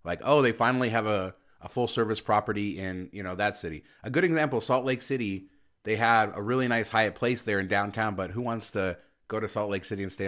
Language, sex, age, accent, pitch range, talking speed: English, male, 30-49, American, 95-110 Hz, 240 wpm